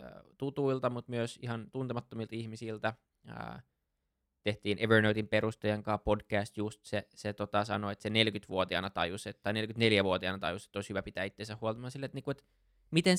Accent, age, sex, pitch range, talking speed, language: native, 20-39, male, 105-140 Hz, 145 wpm, Finnish